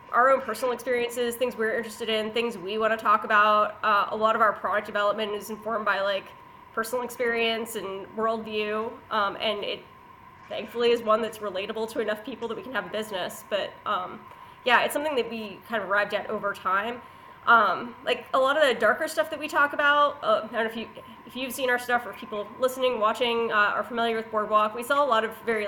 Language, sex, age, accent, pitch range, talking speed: English, female, 20-39, American, 215-275 Hz, 225 wpm